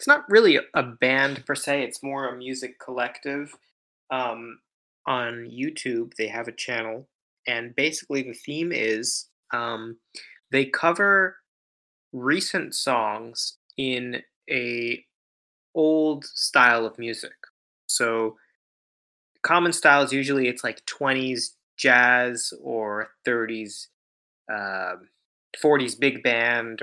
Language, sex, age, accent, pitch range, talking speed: English, male, 20-39, American, 115-135 Hz, 110 wpm